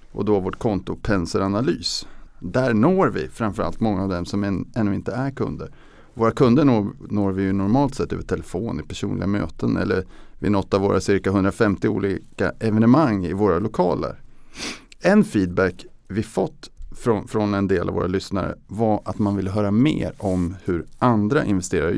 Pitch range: 95-120 Hz